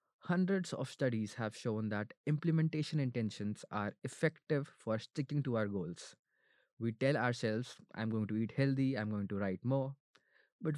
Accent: Indian